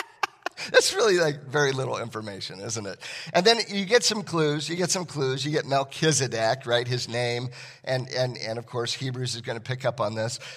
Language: English